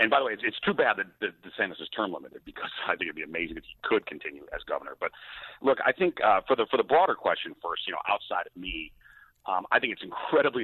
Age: 40-59